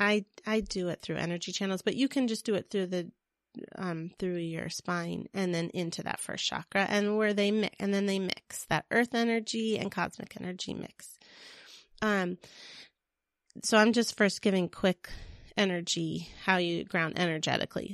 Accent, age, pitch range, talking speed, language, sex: American, 30-49, 180-220 Hz, 170 wpm, English, female